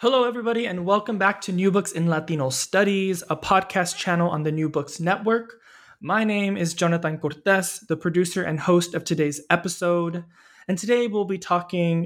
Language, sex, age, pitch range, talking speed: English, male, 20-39, 160-190 Hz, 180 wpm